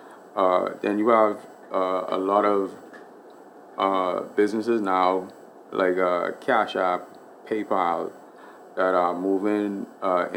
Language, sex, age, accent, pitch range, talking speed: English, male, 30-49, American, 90-100 Hz, 110 wpm